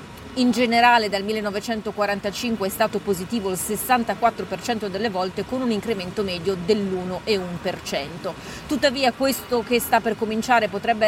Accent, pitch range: native, 200-230 Hz